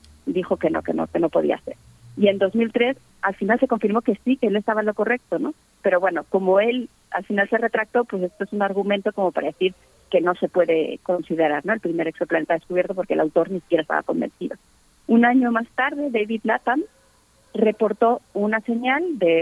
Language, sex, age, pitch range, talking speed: Spanish, female, 30-49, 180-230 Hz, 210 wpm